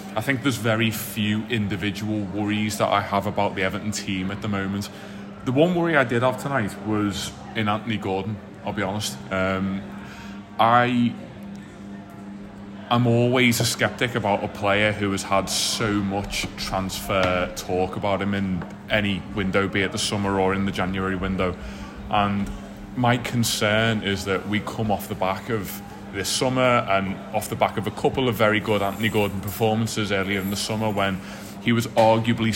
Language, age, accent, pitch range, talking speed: English, 20-39, British, 100-115 Hz, 175 wpm